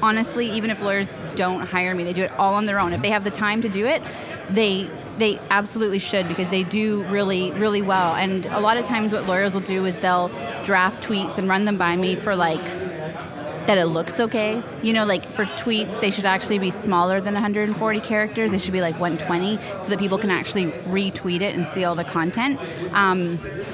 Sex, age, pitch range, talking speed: female, 30-49, 180-215 Hz, 220 wpm